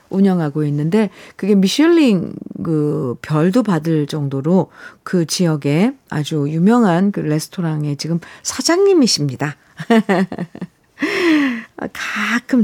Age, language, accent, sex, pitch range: 50-69, Korean, native, female, 175-260 Hz